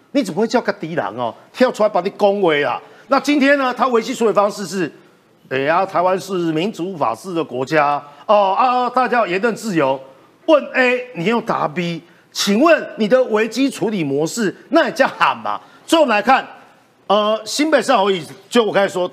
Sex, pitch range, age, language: male, 185-275 Hz, 50-69, Chinese